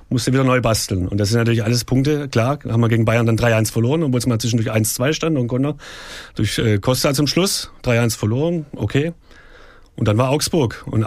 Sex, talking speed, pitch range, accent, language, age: male, 205 wpm, 120-145 Hz, German, German, 40-59